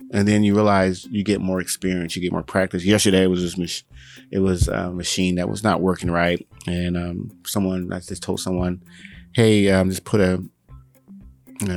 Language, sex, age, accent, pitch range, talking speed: English, male, 30-49, American, 85-100 Hz, 200 wpm